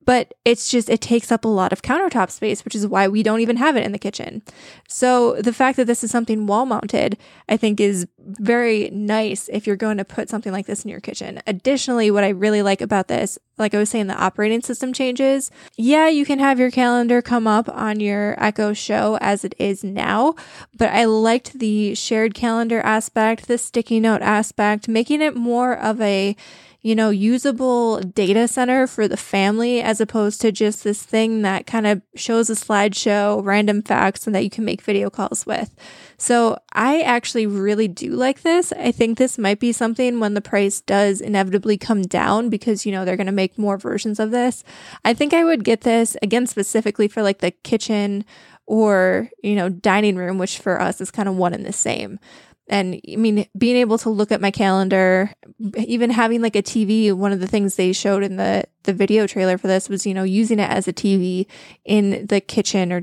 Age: 10-29